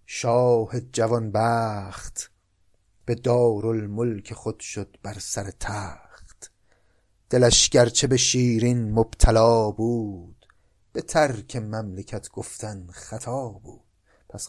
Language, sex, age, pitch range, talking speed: Persian, male, 30-49, 100-125 Hz, 95 wpm